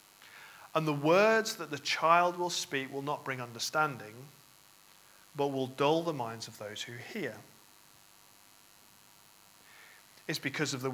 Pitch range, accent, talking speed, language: 120-160 Hz, British, 135 wpm, English